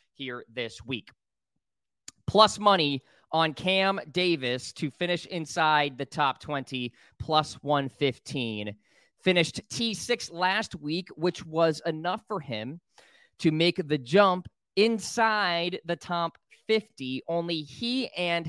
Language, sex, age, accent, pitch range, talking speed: English, male, 20-39, American, 140-175 Hz, 115 wpm